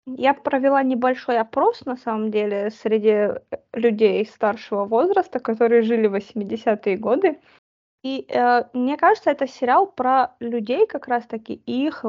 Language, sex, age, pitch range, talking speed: Russian, female, 20-39, 225-270 Hz, 145 wpm